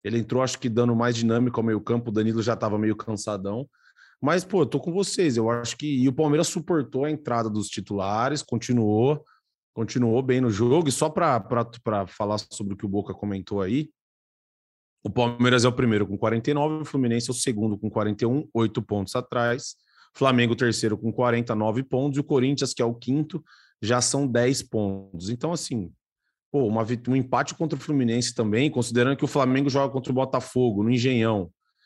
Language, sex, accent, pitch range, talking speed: Portuguese, male, Brazilian, 110-140 Hz, 190 wpm